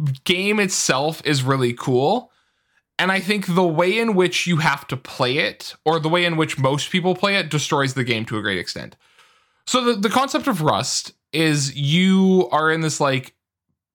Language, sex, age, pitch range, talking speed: English, male, 20-39, 130-185 Hz, 195 wpm